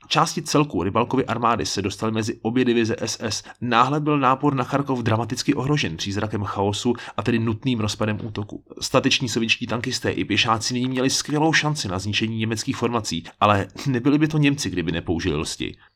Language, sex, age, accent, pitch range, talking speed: Czech, male, 30-49, native, 105-135 Hz, 165 wpm